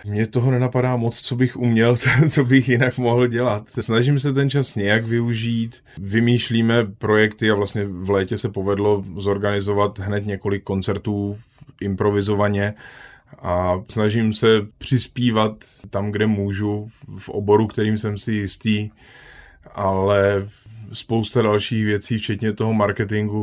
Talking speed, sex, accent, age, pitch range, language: 130 wpm, male, native, 20-39, 105-115 Hz, Czech